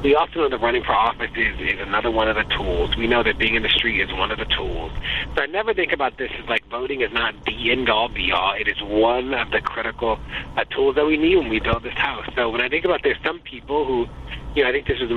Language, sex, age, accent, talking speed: English, male, 30-49, American, 290 wpm